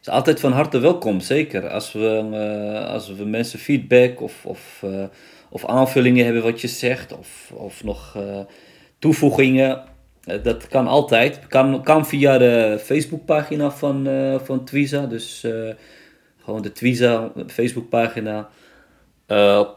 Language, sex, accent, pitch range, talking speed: Dutch, male, Dutch, 105-135 Hz, 145 wpm